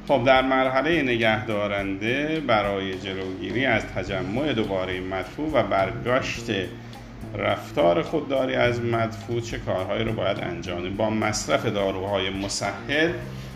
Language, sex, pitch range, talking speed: Persian, male, 100-120 Hz, 110 wpm